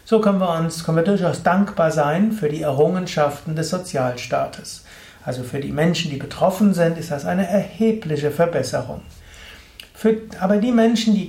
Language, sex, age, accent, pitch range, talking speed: German, male, 60-79, German, 135-185 Hz, 165 wpm